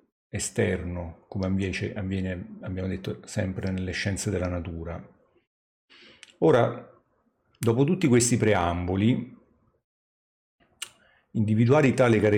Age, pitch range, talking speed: 50-69, 95-115 Hz, 80 wpm